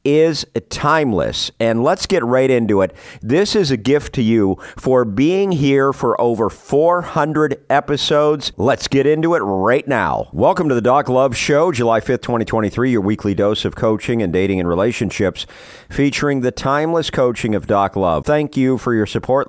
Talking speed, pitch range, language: 175 wpm, 115-145 Hz, English